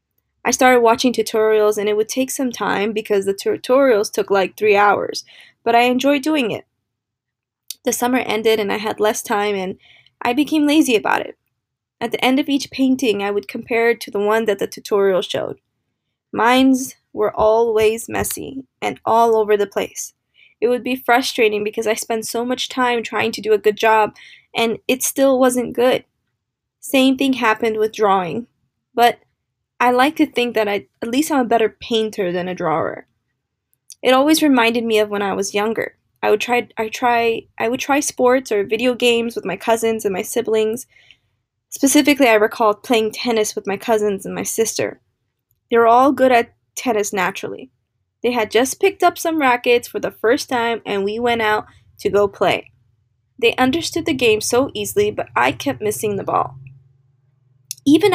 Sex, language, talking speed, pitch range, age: female, English, 185 wpm, 205-250 Hz, 20-39